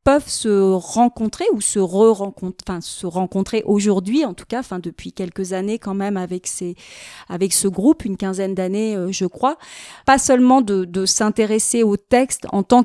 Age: 30-49